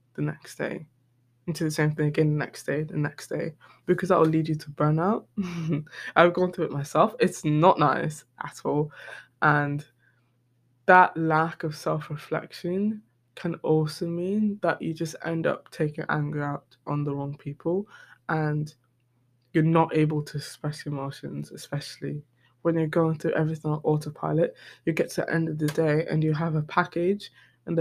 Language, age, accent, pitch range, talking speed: English, 20-39, British, 150-165 Hz, 175 wpm